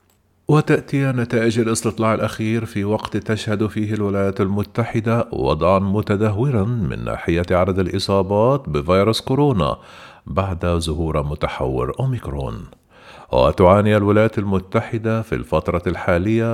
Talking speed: 100 wpm